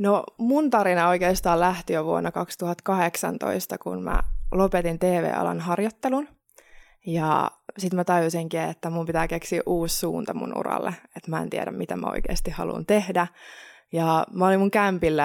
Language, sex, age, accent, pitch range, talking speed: Finnish, female, 20-39, native, 160-185 Hz, 155 wpm